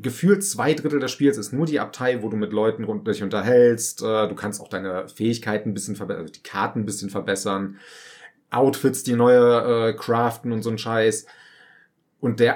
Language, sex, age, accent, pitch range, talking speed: German, male, 30-49, German, 110-135 Hz, 185 wpm